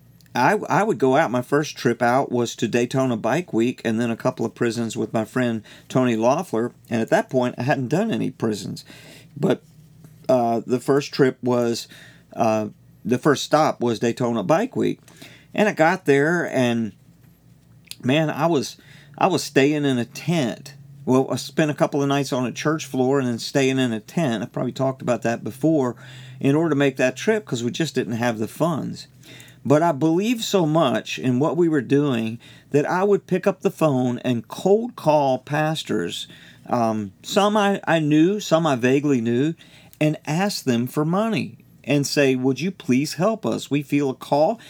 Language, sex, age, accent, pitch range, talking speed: English, male, 50-69, American, 120-160 Hz, 195 wpm